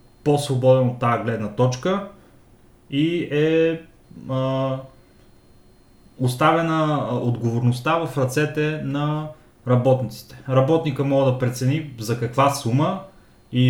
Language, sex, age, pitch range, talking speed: Bulgarian, male, 30-49, 120-150 Hz, 95 wpm